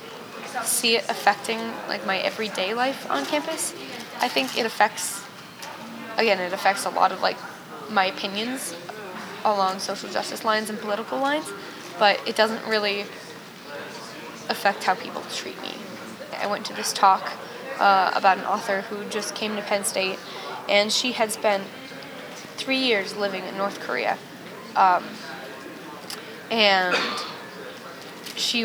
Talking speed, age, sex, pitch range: 140 wpm, 10-29, female, 195-220 Hz